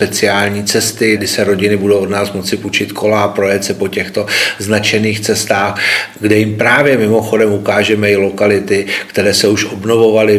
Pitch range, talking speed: 100-115 Hz, 160 wpm